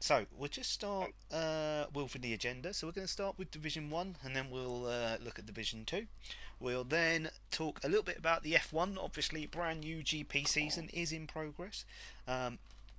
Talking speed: 195 wpm